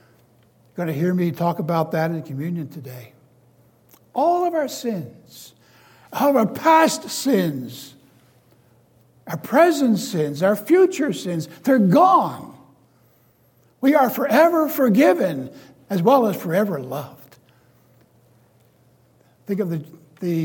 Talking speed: 120 wpm